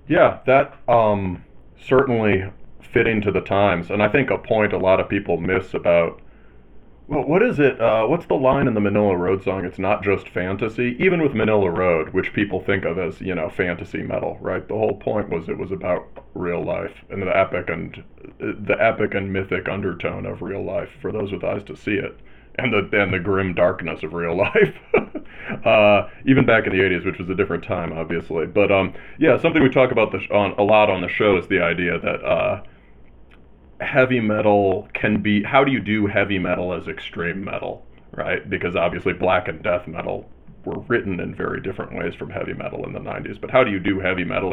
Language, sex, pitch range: English, male, 90-115 Hz